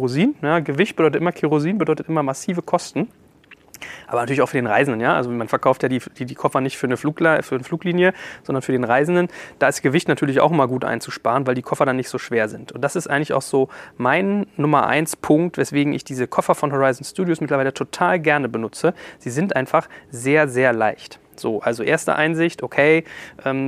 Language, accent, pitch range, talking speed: German, German, 135-170 Hz, 215 wpm